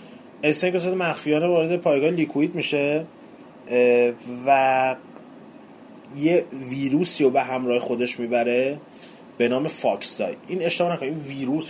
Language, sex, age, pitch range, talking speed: Persian, male, 30-49, 115-155 Hz, 110 wpm